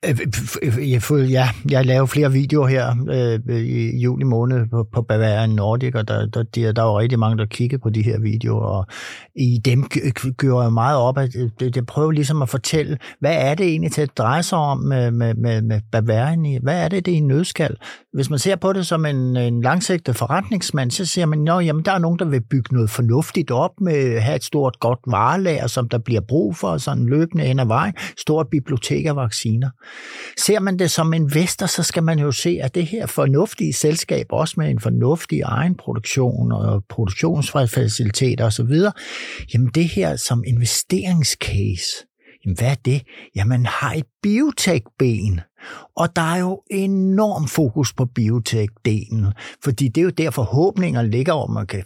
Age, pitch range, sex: 60-79, 115-160 Hz, male